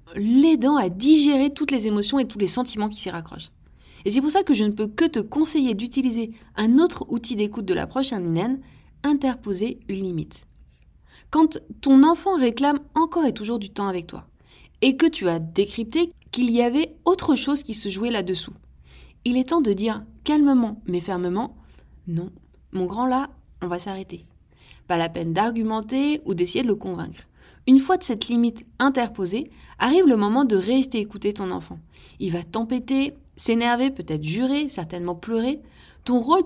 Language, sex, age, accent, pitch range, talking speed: French, female, 20-39, French, 190-270 Hz, 180 wpm